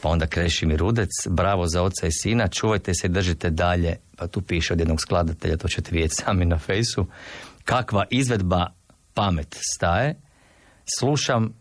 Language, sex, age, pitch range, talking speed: Croatian, male, 50-69, 85-105 Hz, 165 wpm